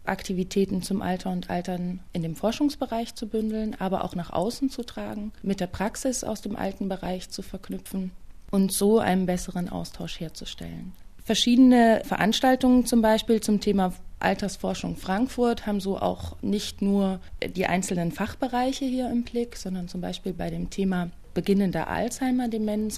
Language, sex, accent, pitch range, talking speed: German, female, German, 180-220 Hz, 150 wpm